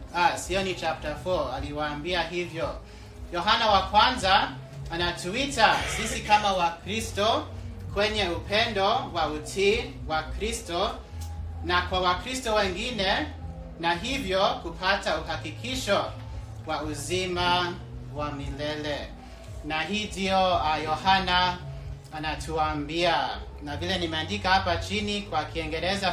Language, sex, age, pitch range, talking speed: English, male, 30-49, 135-195 Hz, 100 wpm